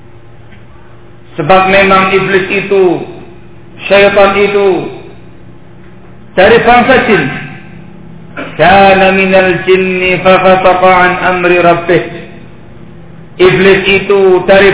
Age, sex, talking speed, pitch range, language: 50-69, male, 50 wpm, 135-200 Hz, Indonesian